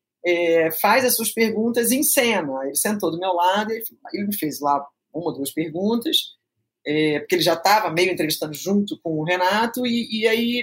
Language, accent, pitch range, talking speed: Portuguese, Brazilian, 175-230 Hz, 200 wpm